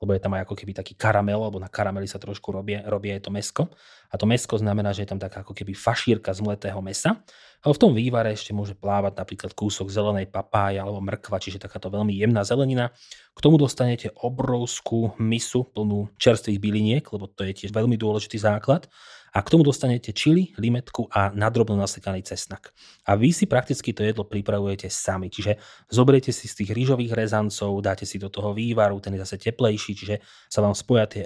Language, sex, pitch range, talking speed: Slovak, male, 100-115 Hz, 200 wpm